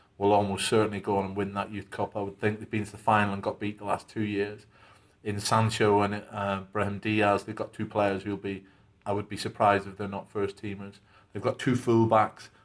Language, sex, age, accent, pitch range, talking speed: English, male, 30-49, British, 100-105 Hz, 240 wpm